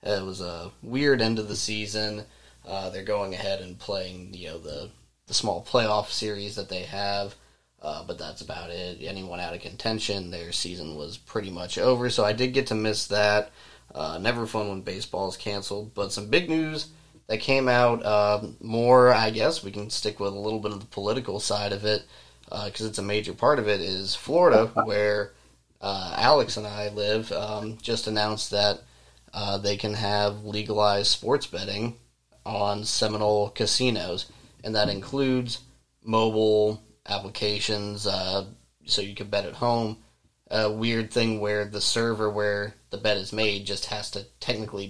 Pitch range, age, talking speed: 100-110 Hz, 20-39, 180 wpm